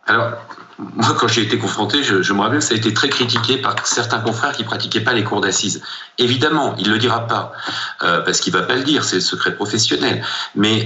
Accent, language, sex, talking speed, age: French, French, male, 240 wpm, 40-59